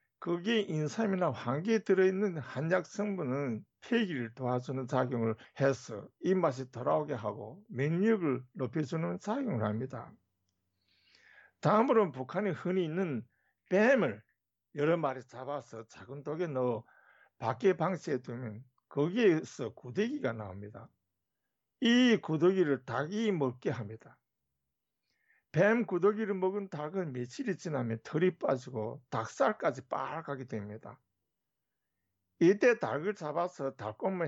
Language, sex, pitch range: Korean, male, 115-185 Hz